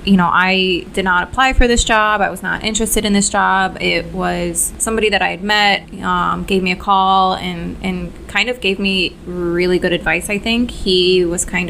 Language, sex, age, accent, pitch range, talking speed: English, female, 20-39, American, 180-195 Hz, 215 wpm